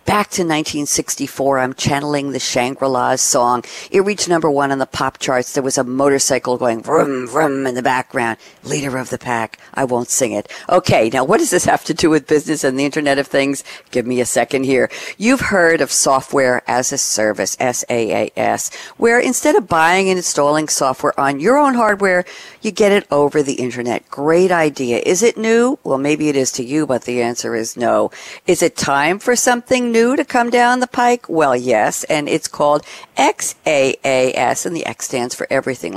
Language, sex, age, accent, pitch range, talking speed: English, female, 50-69, American, 135-190 Hz, 200 wpm